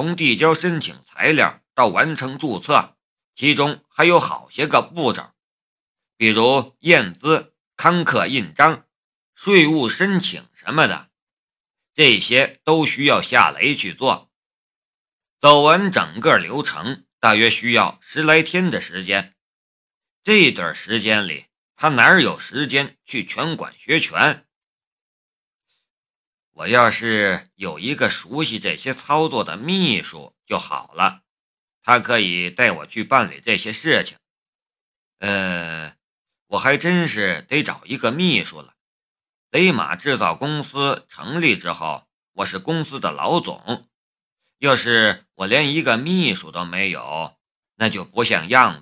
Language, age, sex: Chinese, 50-69, male